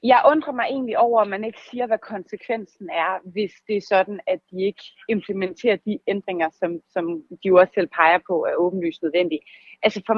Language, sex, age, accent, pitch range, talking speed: Danish, female, 30-49, native, 195-250 Hz, 200 wpm